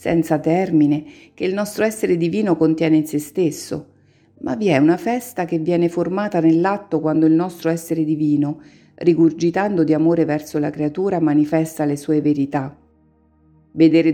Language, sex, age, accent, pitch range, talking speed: Italian, female, 50-69, native, 155-185 Hz, 155 wpm